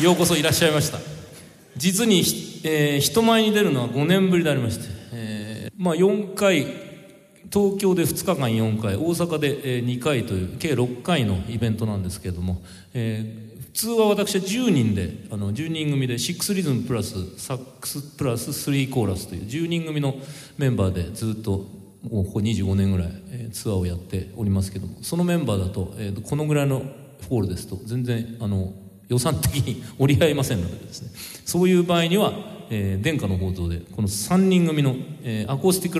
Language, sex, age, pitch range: Japanese, male, 40-59, 100-155 Hz